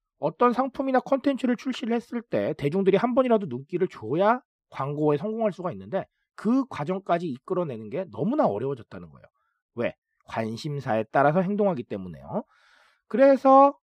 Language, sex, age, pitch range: Korean, male, 40-59, 150-235 Hz